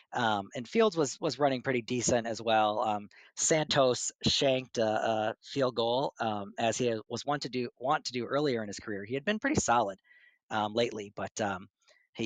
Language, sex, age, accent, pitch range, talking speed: English, male, 40-59, American, 110-130 Hz, 200 wpm